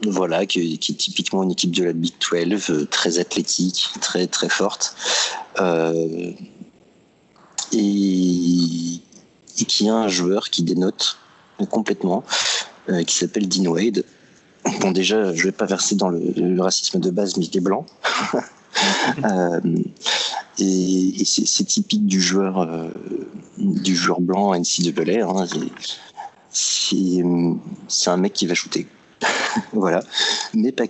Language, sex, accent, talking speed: French, male, French, 140 wpm